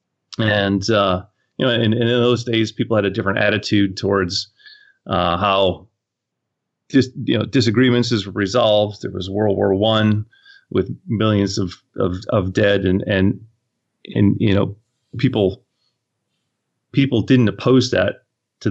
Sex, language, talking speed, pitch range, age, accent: male, English, 145 wpm, 100-120 Hz, 30-49, American